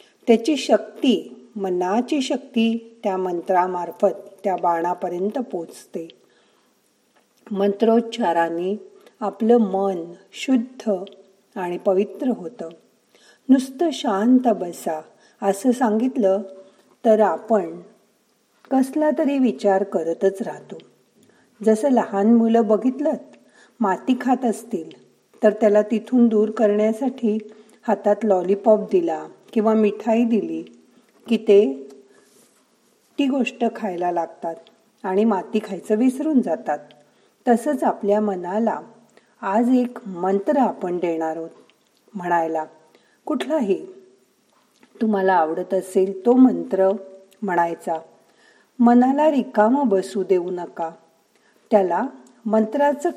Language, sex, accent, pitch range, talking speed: Marathi, female, native, 185-235 Hz, 90 wpm